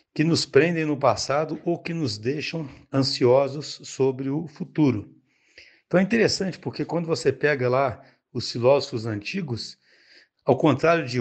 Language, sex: Portuguese, male